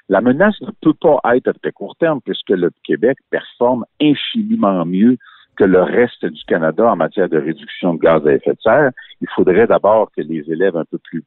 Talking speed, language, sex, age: 215 wpm, French, male, 60-79